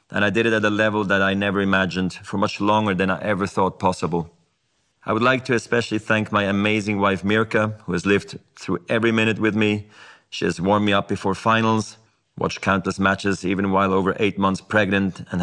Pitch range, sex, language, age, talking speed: 95-110 Hz, male, English, 30-49, 210 wpm